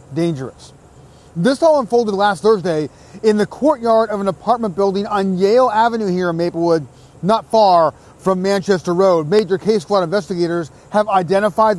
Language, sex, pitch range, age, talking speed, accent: English, male, 170-215 Hz, 30-49, 155 wpm, American